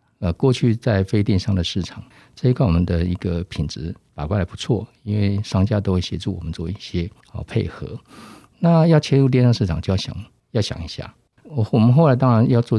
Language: Chinese